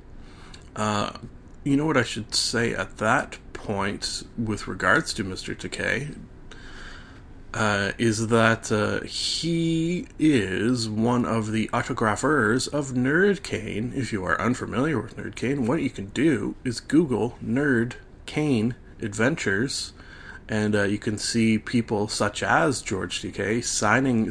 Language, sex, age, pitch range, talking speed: English, male, 30-49, 105-125 Hz, 130 wpm